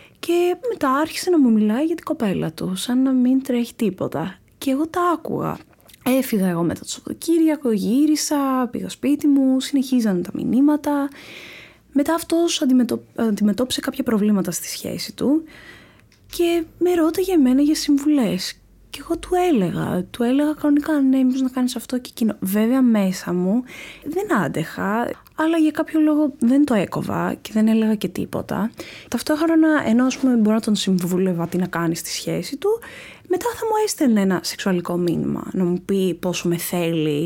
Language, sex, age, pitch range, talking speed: Greek, female, 20-39, 195-275 Hz, 165 wpm